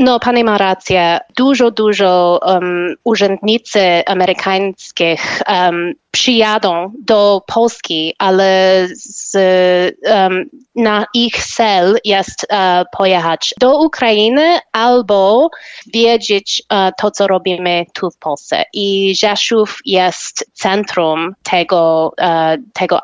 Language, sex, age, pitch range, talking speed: Polish, female, 20-39, 185-235 Hz, 85 wpm